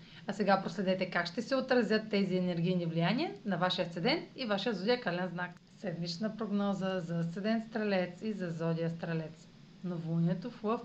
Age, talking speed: 40-59, 165 wpm